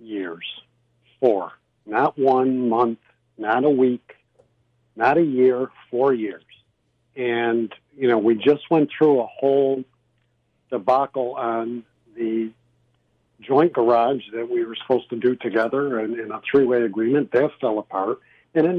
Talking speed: 145 wpm